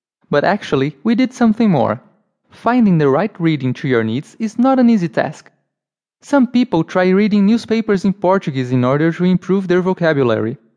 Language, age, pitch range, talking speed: English, 20-39, 150-215 Hz, 175 wpm